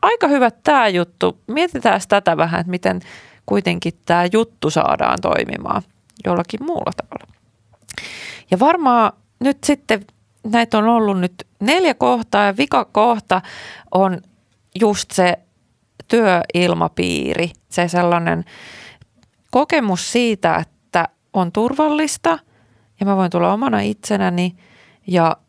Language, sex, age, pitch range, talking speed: Finnish, female, 30-49, 160-220 Hz, 115 wpm